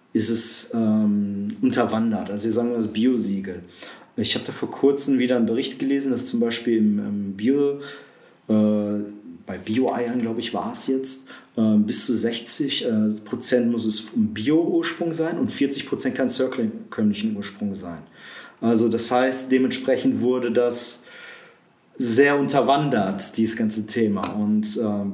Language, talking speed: German, 155 wpm